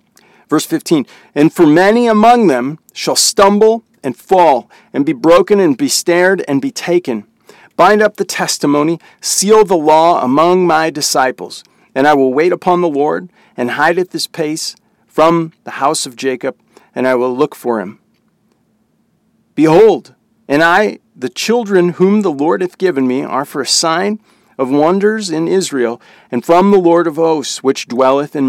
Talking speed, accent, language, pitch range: 170 wpm, American, English, 145-210 Hz